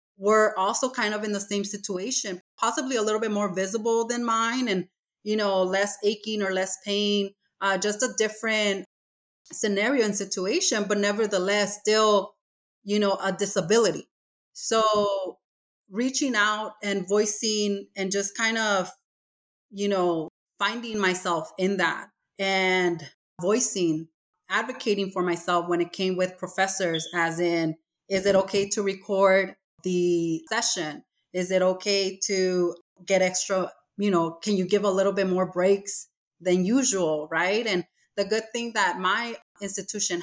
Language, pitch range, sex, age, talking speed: English, 185-210 Hz, female, 30-49, 145 wpm